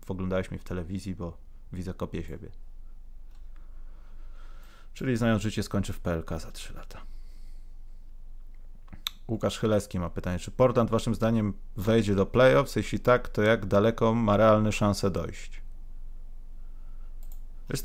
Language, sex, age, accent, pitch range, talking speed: Polish, male, 30-49, native, 95-120 Hz, 130 wpm